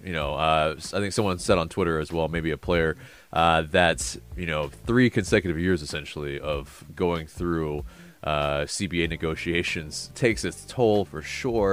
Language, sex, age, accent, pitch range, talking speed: English, male, 30-49, American, 80-95 Hz, 170 wpm